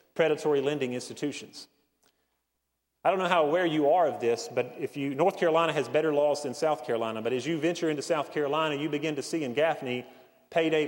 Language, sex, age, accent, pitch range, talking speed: English, male, 30-49, American, 130-165 Hz, 205 wpm